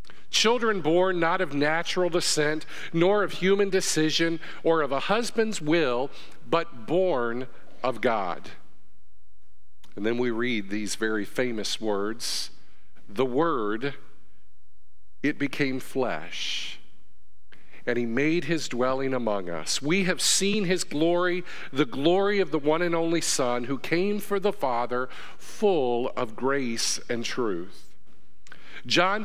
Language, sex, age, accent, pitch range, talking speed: English, male, 50-69, American, 115-185 Hz, 130 wpm